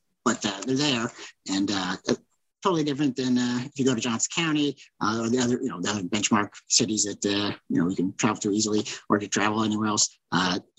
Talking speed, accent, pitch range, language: 230 wpm, American, 115-145 Hz, English